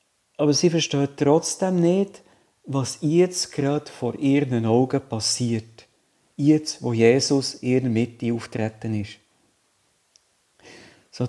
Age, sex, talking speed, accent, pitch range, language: 50-69, male, 110 wpm, Austrian, 120-150 Hz, German